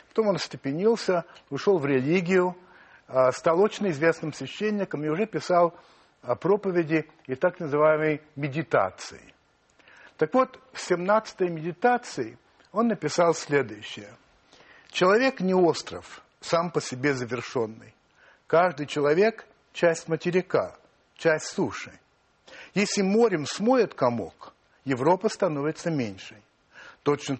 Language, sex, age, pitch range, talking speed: Russian, male, 60-79, 140-185 Hz, 105 wpm